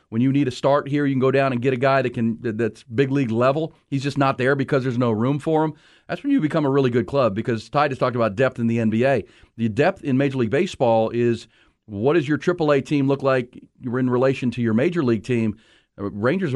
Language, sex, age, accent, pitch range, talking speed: English, male, 40-59, American, 115-140 Hz, 250 wpm